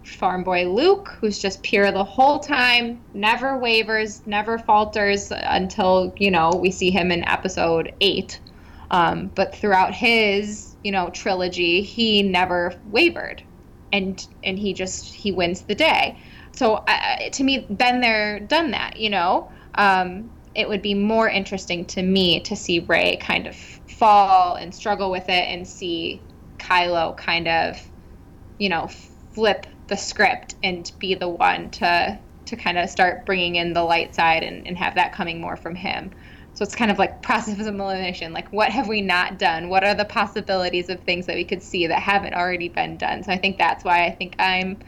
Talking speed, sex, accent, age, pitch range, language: 185 wpm, female, American, 20-39, 180-215 Hz, English